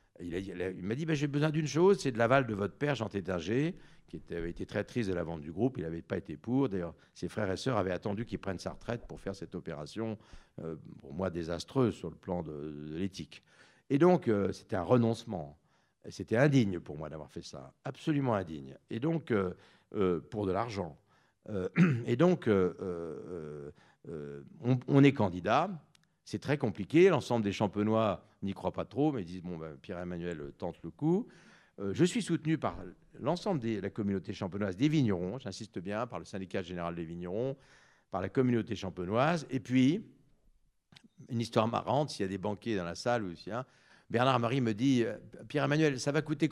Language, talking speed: French, 210 wpm